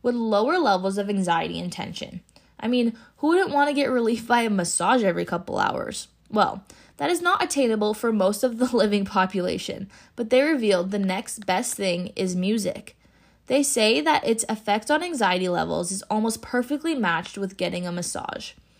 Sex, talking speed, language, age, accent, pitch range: female, 180 wpm, English, 20-39, American, 190-250 Hz